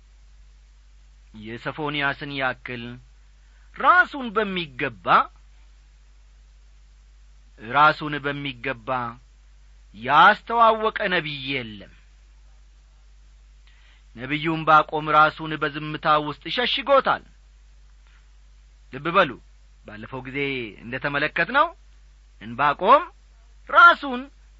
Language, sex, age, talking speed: Amharic, male, 40-59, 55 wpm